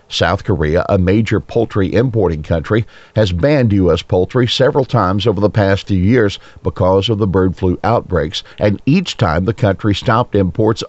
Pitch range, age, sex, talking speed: 90-120 Hz, 50-69, male, 170 wpm